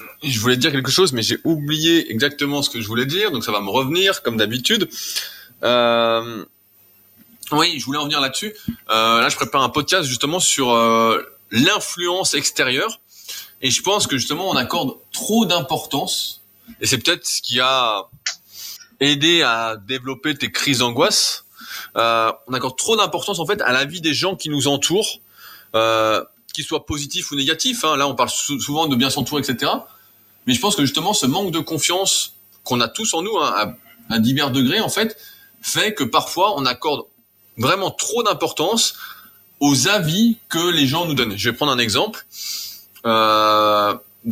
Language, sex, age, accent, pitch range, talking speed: French, male, 20-39, French, 120-175 Hz, 180 wpm